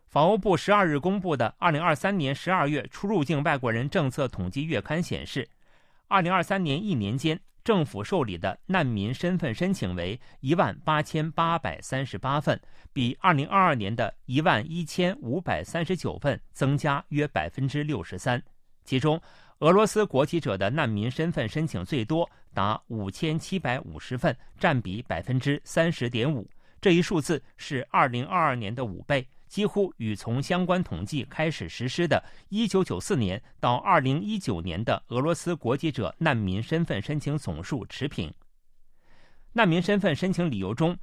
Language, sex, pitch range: Chinese, male, 125-180 Hz